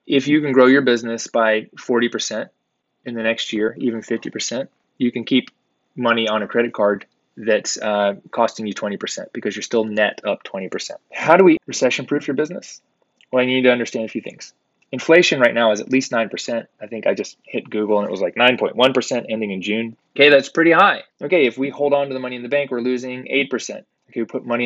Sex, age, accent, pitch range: male, 20-39, American, 110-130 Hz